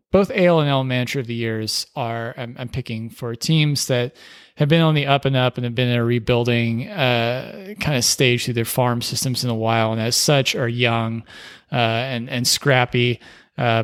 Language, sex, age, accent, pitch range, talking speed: English, male, 30-49, American, 115-130 Hz, 215 wpm